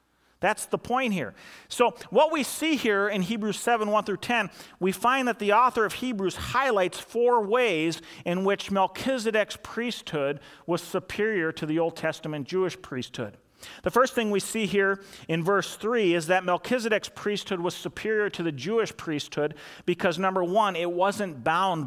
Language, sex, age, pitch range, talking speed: English, male, 40-59, 175-230 Hz, 170 wpm